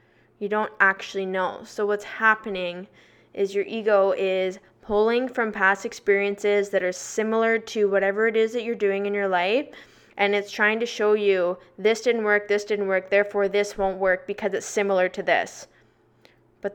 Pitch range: 190-215 Hz